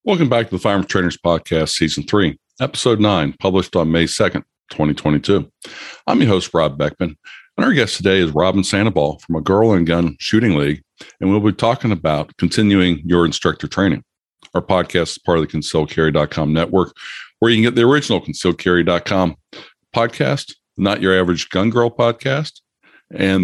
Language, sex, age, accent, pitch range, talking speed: English, male, 50-69, American, 85-105 Hz, 170 wpm